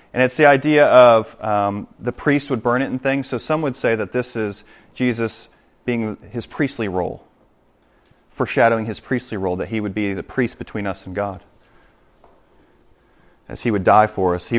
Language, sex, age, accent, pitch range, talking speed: English, male, 30-49, American, 105-170 Hz, 190 wpm